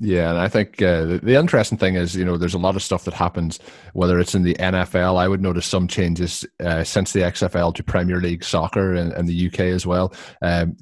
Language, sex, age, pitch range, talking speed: English, male, 20-39, 85-105 Hz, 235 wpm